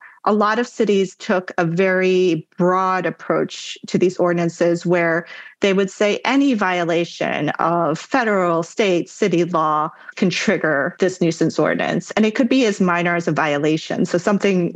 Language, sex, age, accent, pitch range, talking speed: English, female, 30-49, American, 170-210 Hz, 160 wpm